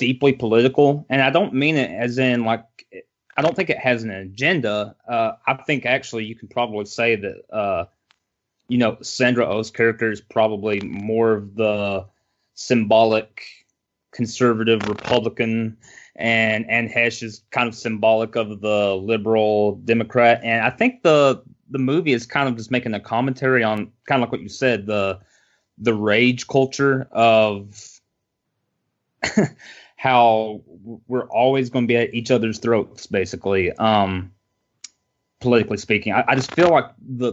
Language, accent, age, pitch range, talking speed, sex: English, American, 30-49, 110-125 Hz, 155 wpm, male